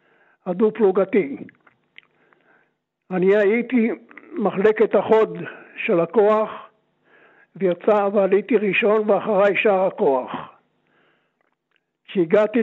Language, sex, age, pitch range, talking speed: Hebrew, male, 60-79, 190-225 Hz, 65 wpm